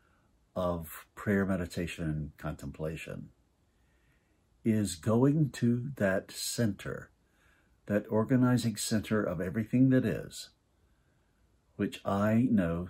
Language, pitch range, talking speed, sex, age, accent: English, 80-105 Hz, 95 wpm, male, 60-79, American